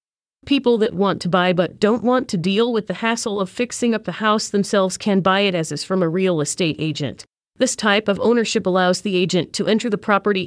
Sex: female